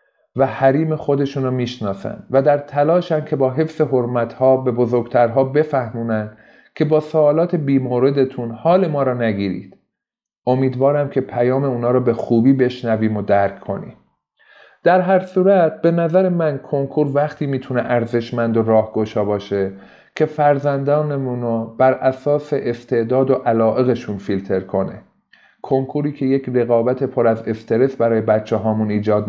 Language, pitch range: Persian, 115-135 Hz